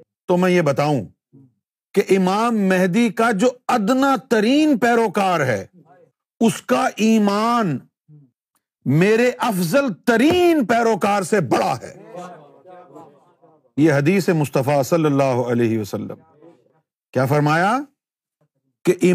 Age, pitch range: 50-69, 145-220 Hz